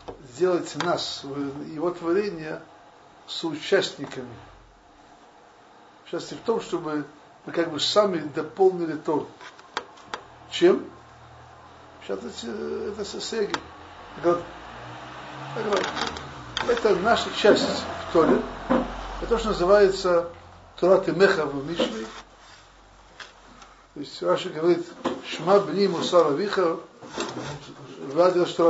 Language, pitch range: Russian, 145-185 Hz